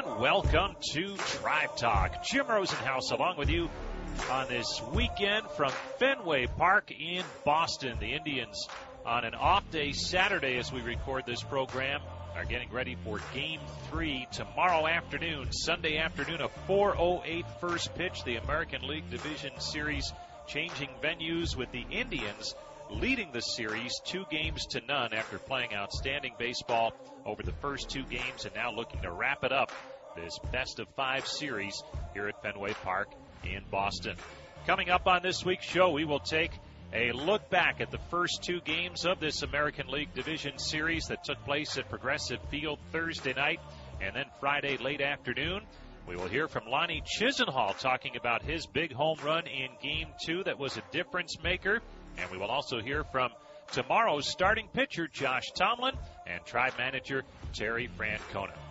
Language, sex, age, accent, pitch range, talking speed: English, male, 40-59, American, 115-165 Hz, 165 wpm